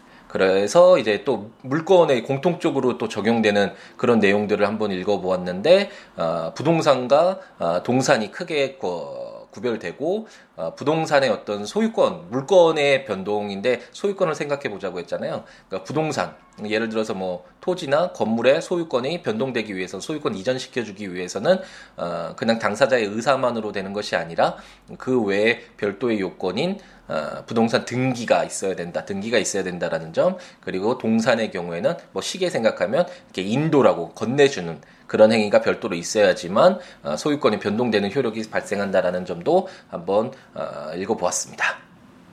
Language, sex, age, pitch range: Korean, male, 20-39, 100-155 Hz